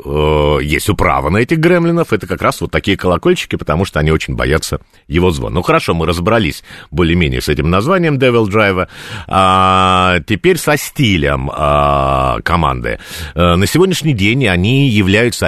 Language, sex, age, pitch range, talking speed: Russian, male, 50-69, 85-130 Hz, 145 wpm